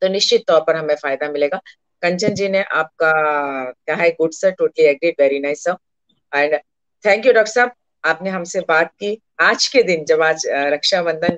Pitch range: 155-230 Hz